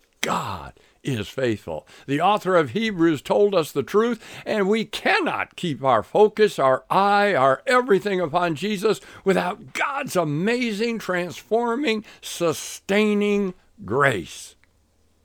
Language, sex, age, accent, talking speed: English, male, 60-79, American, 115 wpm